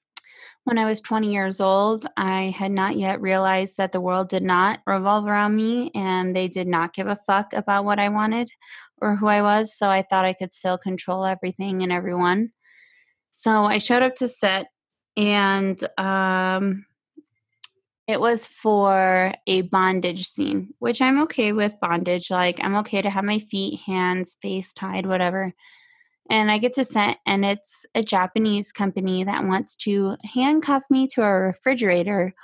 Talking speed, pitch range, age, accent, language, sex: 170 wpm, 190-230 Hz, 20-39, American, English, female